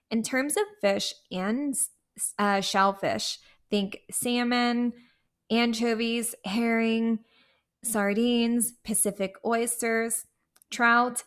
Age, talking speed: 20-39, 80 wpm